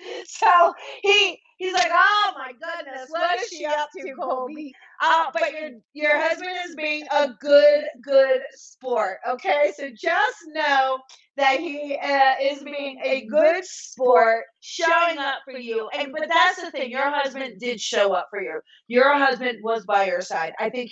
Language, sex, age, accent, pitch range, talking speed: English, female, 30-49, American, 220-300 Hz, 170 wpm